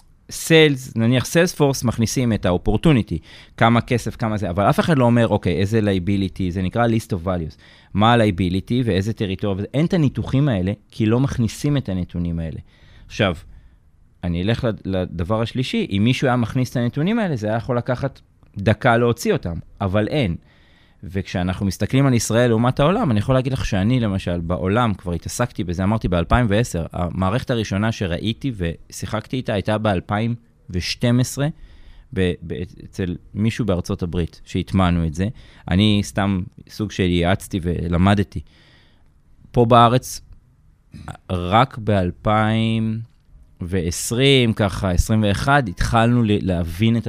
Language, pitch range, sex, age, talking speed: Hebrew, 90-120 Hz, male, 30-49, 135 wpm